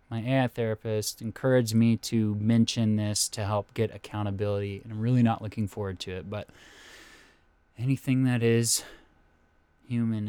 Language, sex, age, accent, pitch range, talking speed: English, male, 20-39, American, 95-115 Hz, 145 wpm